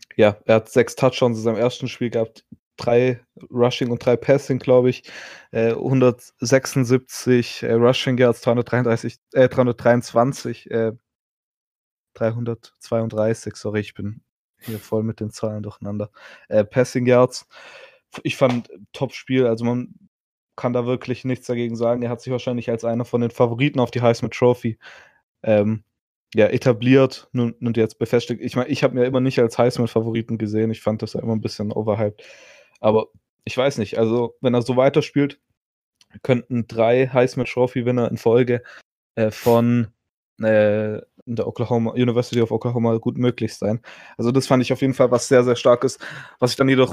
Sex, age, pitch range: male, 20-39, 115-125 Hz